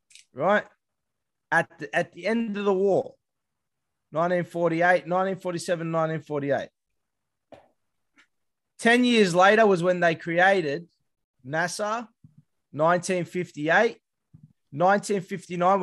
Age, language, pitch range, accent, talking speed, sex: 20-39, English, 150-195 Hz, Australian, 80 wpm, male